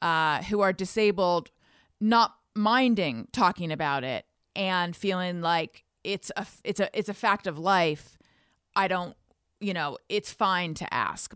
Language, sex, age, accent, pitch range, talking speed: English, female, 30-49, American, 165-215 Hz, 155 wpm